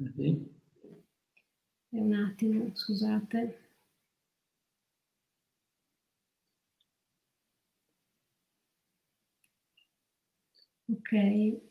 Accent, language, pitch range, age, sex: native, Italian, 200-235 Hz, 50-69, female